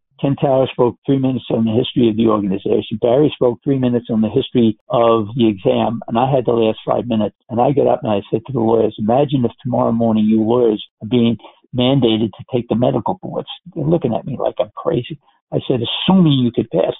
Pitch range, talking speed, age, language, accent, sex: 115-160 Hz, 230 wpm, 60-79, English, American, male